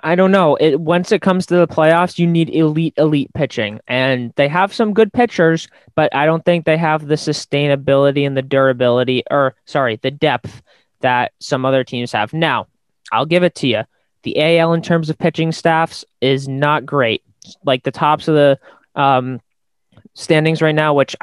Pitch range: 125-155 Hz